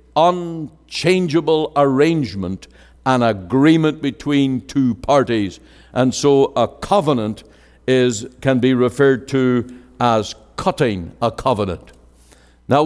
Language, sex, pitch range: English, male, 110-145 Hz